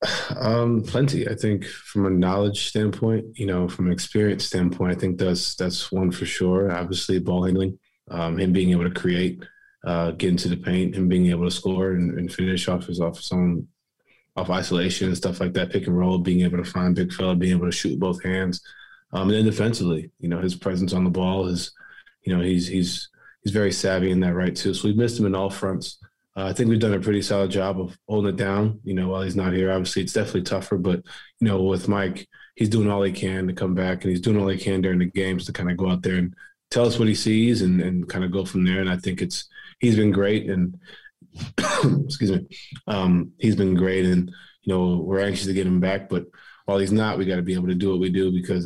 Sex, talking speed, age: male, 250 wpm, 20-39